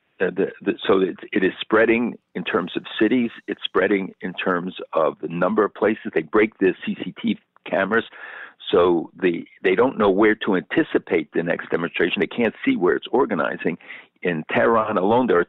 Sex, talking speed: male, 185 wpm